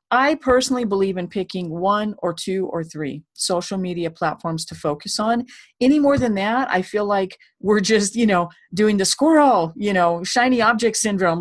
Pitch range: 175-230 Hz